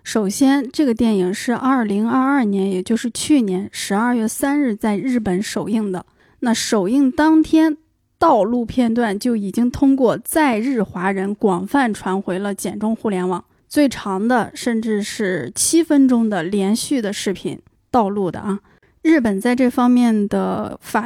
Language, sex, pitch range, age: Chinese, female, 205-255 Hz, 20-39